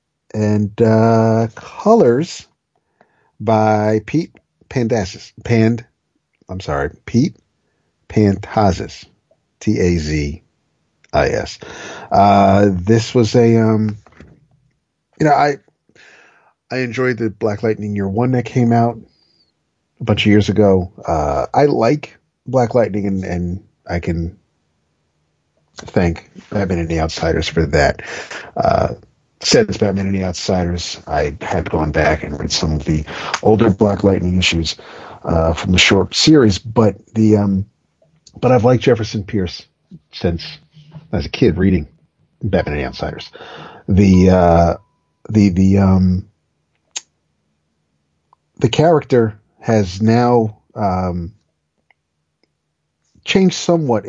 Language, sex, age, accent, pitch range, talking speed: English, male, 50-69, American, 90-115 Hz, 115 wpm